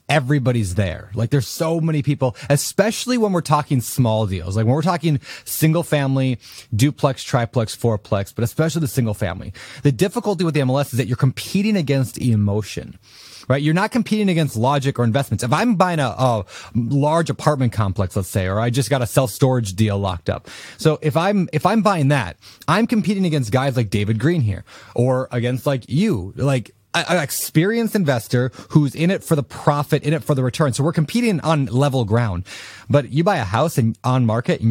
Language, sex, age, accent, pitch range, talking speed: English, male, 30-49, American, 110-150 Hz, 200 wpm